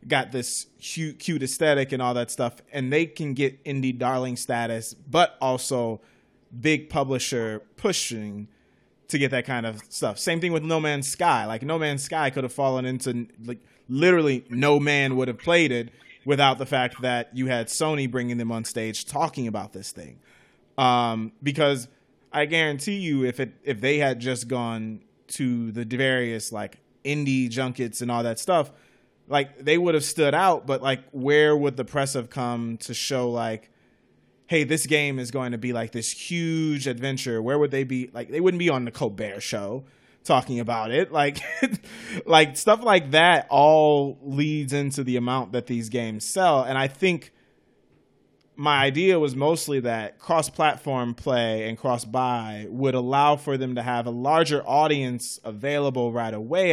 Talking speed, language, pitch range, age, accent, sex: 175 wpm, English, 120-145 Hz, 20-39, American, male